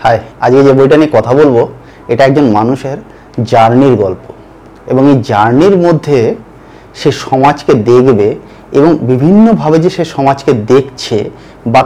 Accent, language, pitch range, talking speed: native, Bengali, 120-165 Hz, 130 wpm